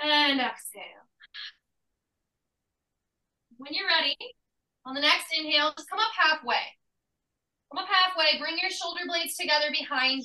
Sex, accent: female, American